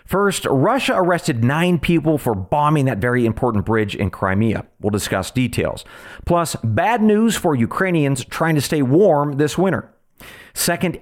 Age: 40-59